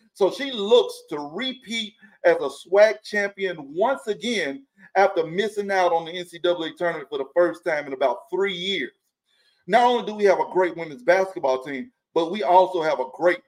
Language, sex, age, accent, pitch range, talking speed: English, male, 40-59, American, 175-235 Hz, 185 wpm